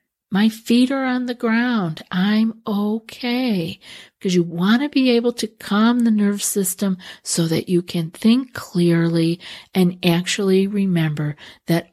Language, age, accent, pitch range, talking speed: English, 50-69, American, 175-230 Hz, 145 wpm